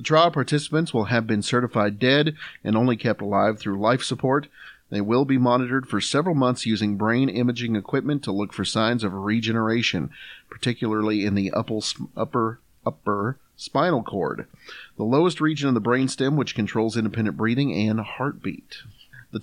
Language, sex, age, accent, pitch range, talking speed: English, male, 40-59, American, 105-130 Hz, 165 wpm